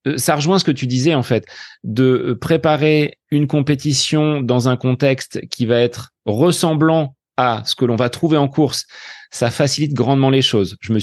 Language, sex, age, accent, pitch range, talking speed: French, male, 30-49, French, 120-150 Hz, 185 wpm